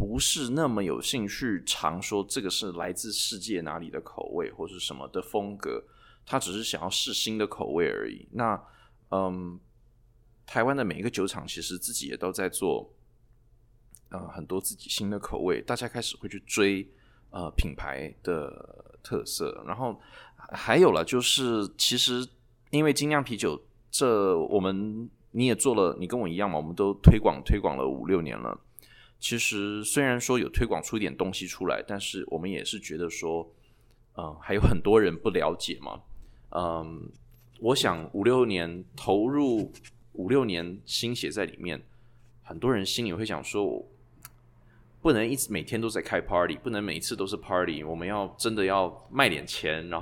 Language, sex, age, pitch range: Chinese, male, 20-39, 95-120 Hz